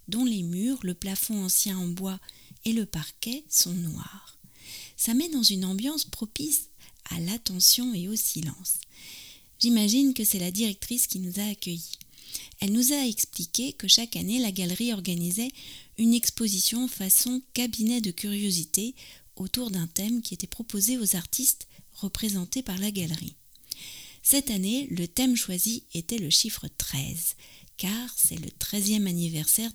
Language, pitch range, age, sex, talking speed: French, 180-230 Hz, 40-59, female, 150 wpm